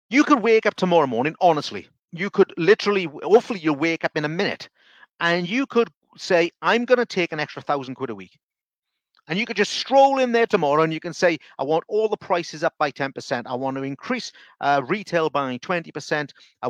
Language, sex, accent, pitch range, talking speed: English, male, British, 140-190 Hz, 210 wpm